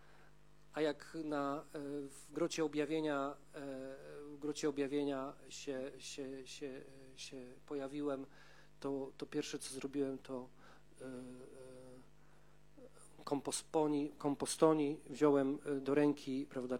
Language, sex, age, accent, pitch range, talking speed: Polish, male, 40-59, native, 130-150 Hz, 75 wpm